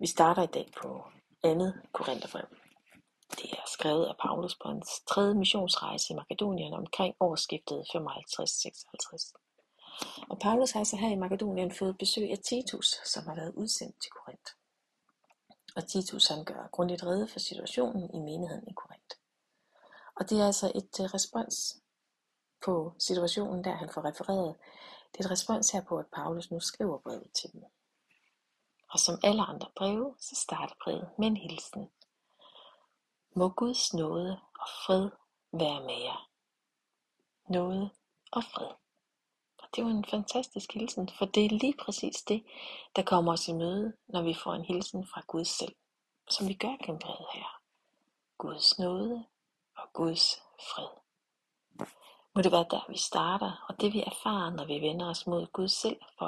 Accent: native